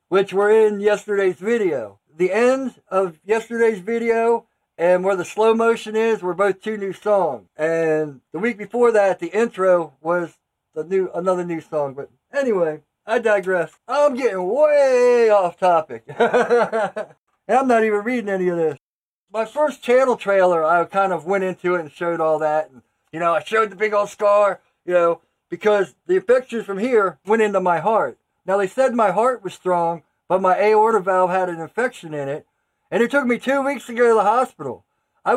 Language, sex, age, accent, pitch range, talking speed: English, male, 50-69, American, 180-230 Hz, 190 wpm